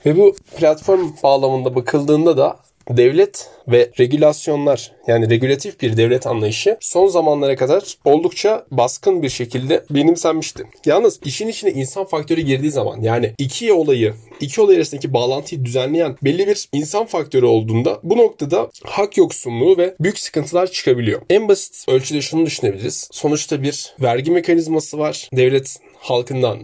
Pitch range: 130-195 Hz